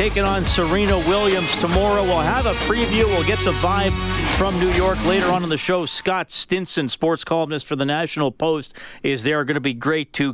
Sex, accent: male, American